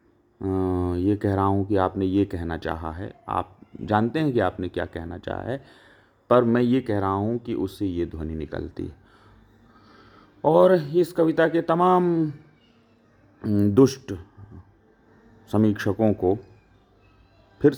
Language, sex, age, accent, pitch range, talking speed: Hindi, male, 40-59, native, 100-140 Hz, 135 wpm